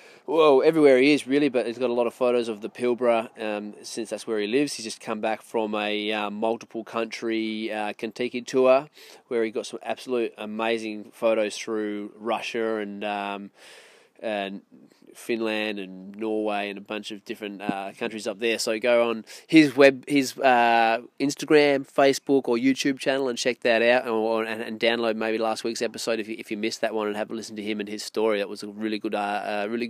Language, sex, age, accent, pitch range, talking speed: English, male, 20-39, Australian, 110-130 Hz, 215 wpm